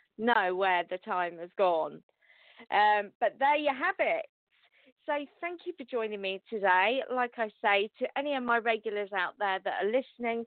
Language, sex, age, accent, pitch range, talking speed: English, female, 40-59, British, 195-245 Hz, 185 wpm